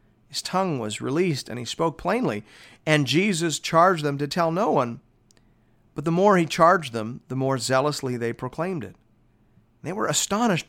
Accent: American